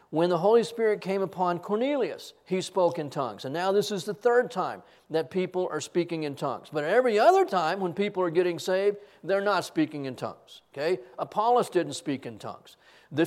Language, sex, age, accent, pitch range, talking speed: English, male, 40-59, American, 155-220 Hz, 205 wpm